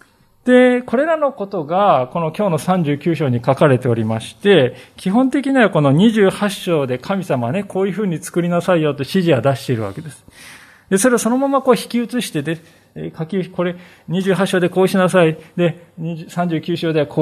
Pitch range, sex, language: 135-205 Hz, male, Japanese